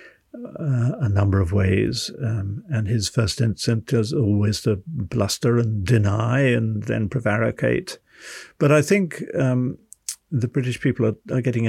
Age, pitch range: 60-79, 105-125 Hz